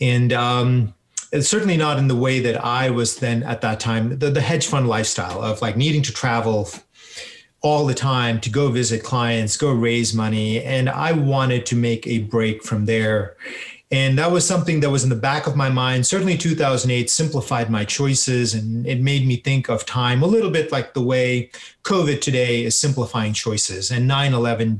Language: English